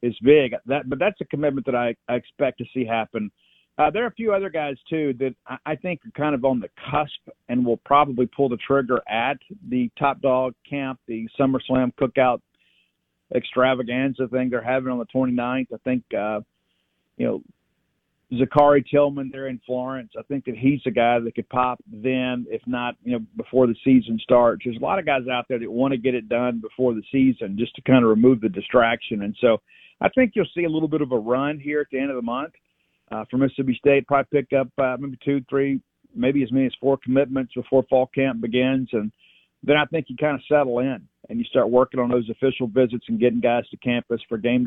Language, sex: English, male